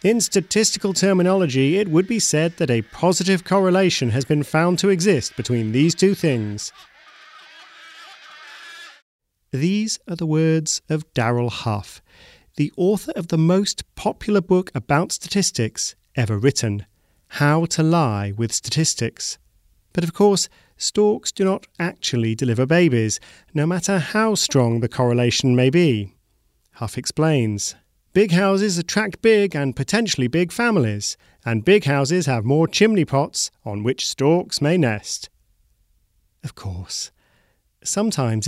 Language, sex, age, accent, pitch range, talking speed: English, male, 40-59, British, 120-185 Hz, 135 wpm